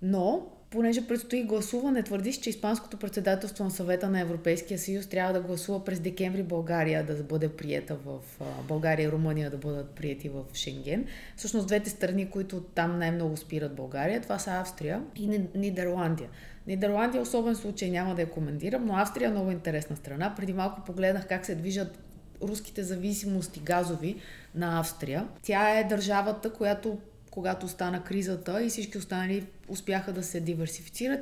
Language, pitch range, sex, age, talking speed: Bulgarian, 165-205 Hz, female, 30-49, 160 wpm